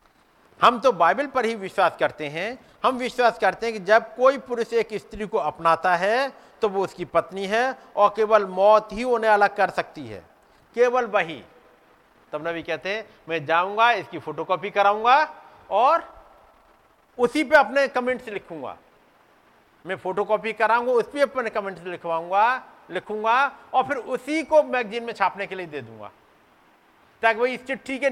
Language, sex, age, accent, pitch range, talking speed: Hindi, male, 50-69, native, 165-240 Hz, 165 wpm